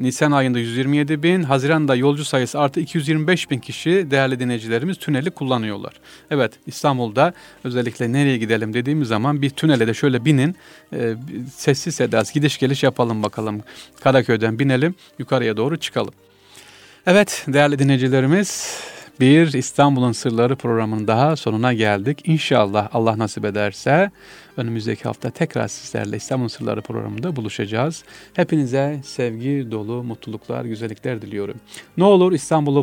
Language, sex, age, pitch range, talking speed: Turkish, male, 40-59, 115-150 Hz, 125 wpm